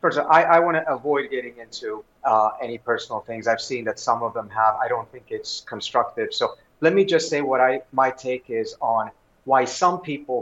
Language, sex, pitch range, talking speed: English, male, 125-170 Hz, 205 wpm